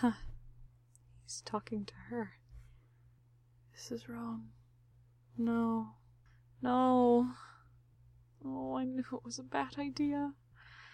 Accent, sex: American, female